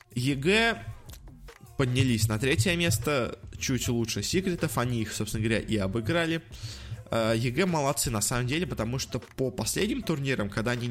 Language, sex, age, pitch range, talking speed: Russian, male, 20-39, 110-135 Hz, 145 wpm